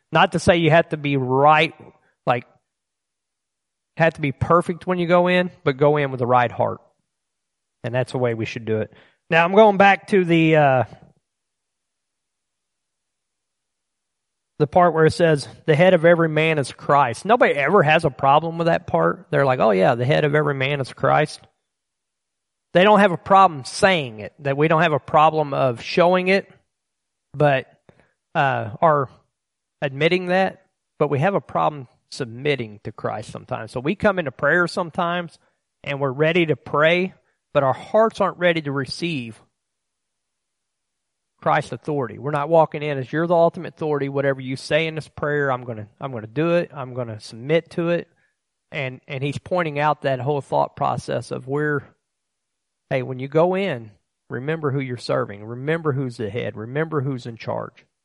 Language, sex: English, male